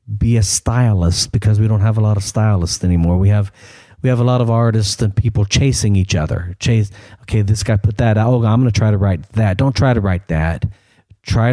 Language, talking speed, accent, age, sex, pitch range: English, 235 wpm, American, 40-59, male, 100-120 Hz